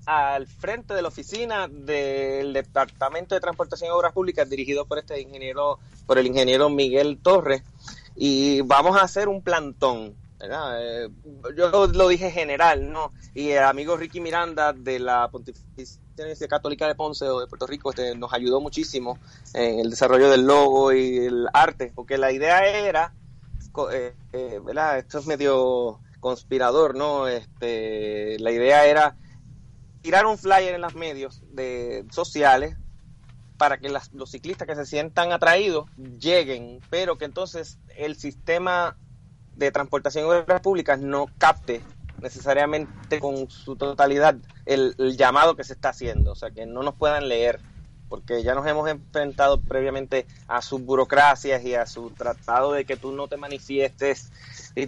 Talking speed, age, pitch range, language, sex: 160 wpm, 30-49, 125-150 Hz, Spanish, male